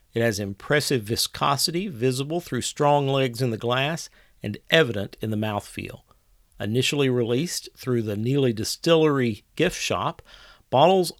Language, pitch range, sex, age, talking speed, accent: English, 110-145 Hz, male, 50-69, 135 wpm, American